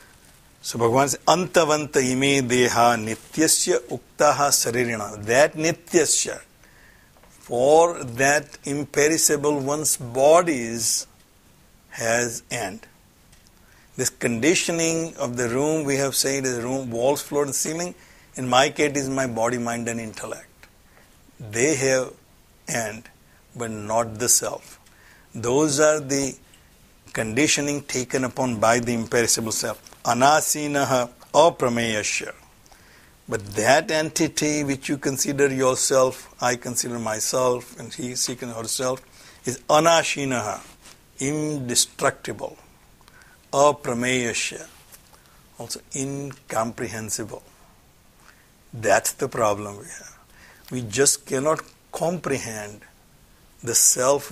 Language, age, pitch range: English, 60-79, 120-150 Hz